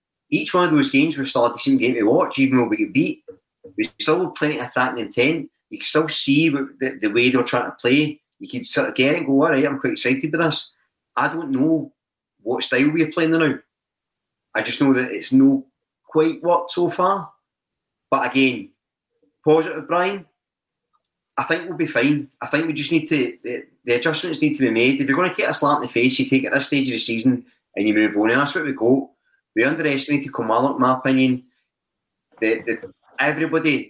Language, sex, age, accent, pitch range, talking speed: English, male, 30-49, British, 125-165 Hz, 225 wpm